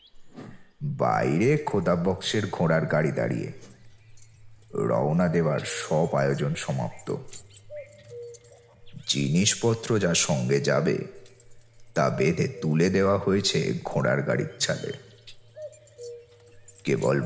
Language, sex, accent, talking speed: Bengali, male, native, 75 wpm